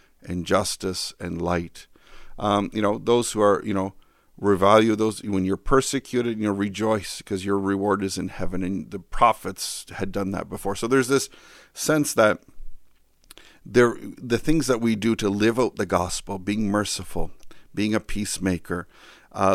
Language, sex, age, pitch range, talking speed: English, male, 50-69, 95-110 Hz, 165 wpm